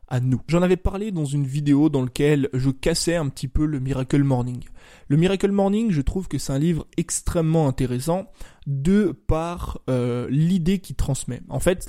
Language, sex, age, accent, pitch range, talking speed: French, male, 20-39, French, 130-170 Hz, 175 wpm